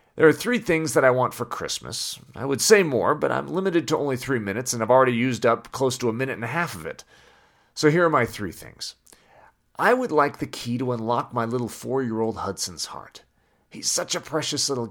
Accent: American